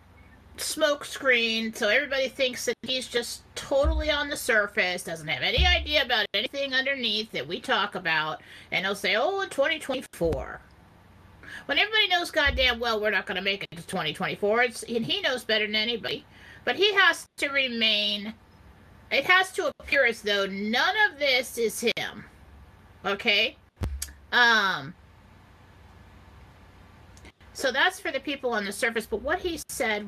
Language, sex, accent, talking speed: English, female, American, 160 wpm